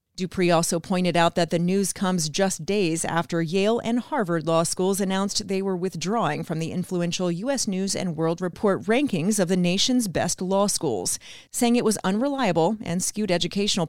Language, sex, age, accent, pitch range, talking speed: English, female, 30-49, American, 170-215 Hz, 180 wpm